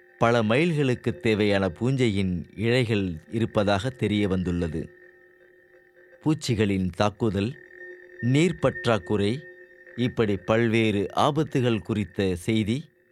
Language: Tamil